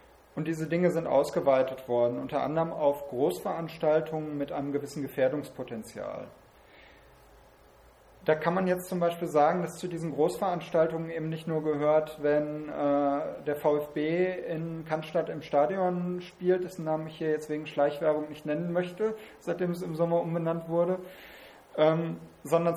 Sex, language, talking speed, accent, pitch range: male, German, 145 wpm, German, 145-165 Hz